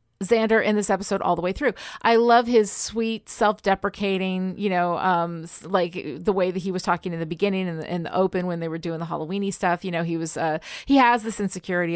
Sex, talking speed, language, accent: female, 235 wpm, English, American